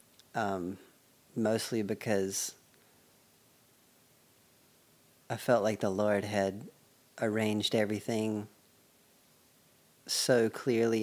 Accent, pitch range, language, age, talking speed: American, 105-120 Hz, English, 40-59, 70 wpm